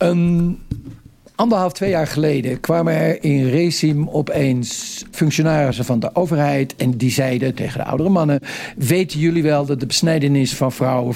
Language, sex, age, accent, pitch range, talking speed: Dutch, male, 60-79, Dutch, 130-170 Hz, 155 wpm